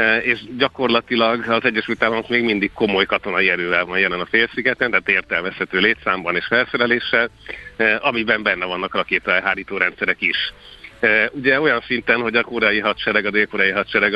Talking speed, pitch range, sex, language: 150 wpm, 100-120 Hz, male, Hungarian